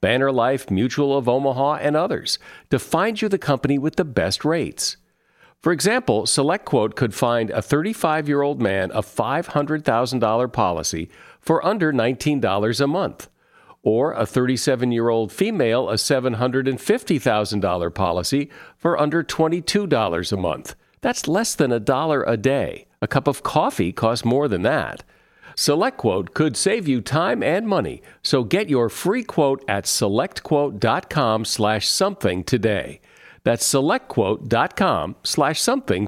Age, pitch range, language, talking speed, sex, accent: 50-69, 110-150 Hz, English, 130 wpm, male, American